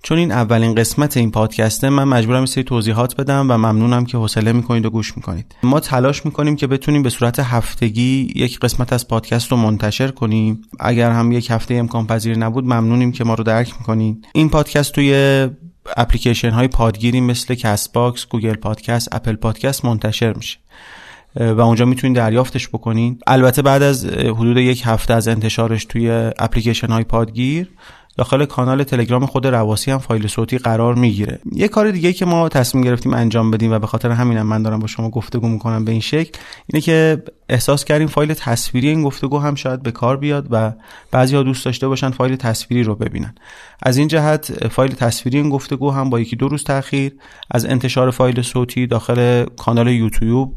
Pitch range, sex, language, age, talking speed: 115-135 Hz, male, Persian, 30-49, 185 wpm